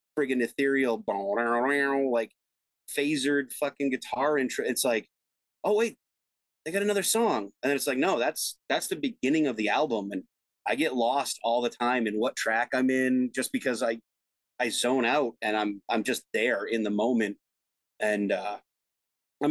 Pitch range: 115-165 Hz